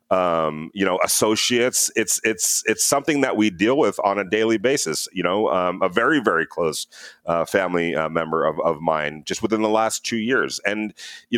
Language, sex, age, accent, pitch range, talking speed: English, male, 40-59, American, 90-120 Hz, 200 wpm